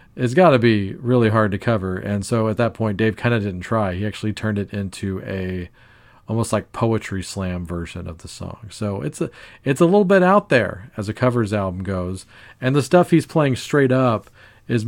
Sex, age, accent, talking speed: male, 40-59, American, 210 wpm